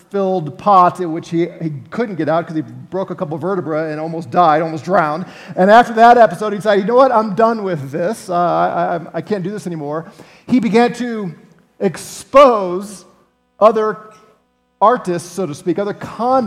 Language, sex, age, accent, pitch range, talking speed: English, male, 40-59, American, 175-220 Hz, 190 wpm